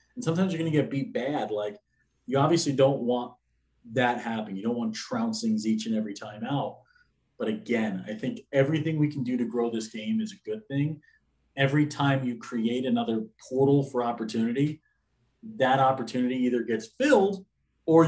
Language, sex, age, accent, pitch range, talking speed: English, male, 30-49, American, 120-150 Hz, 180 wpm